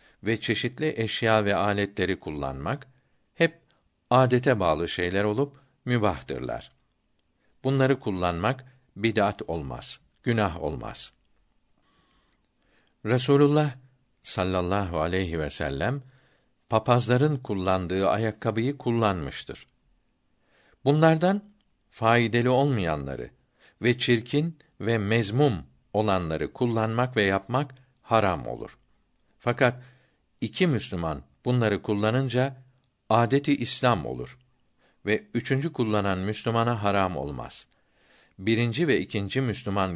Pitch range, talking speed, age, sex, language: 95-130 Hz, 85 wpm, 60-79, male, Turkish